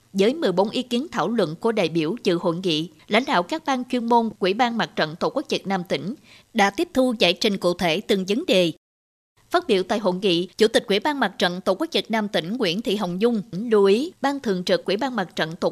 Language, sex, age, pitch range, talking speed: Vietnamese, female, 20-39, 185-245 Hz, 255 wpm